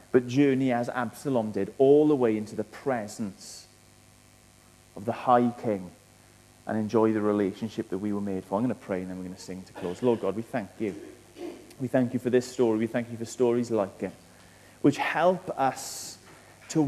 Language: English